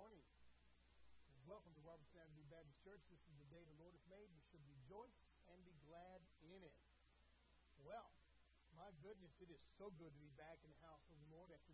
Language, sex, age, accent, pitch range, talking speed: English, male, 40-59, American, 150-175 Hz, 205 wpm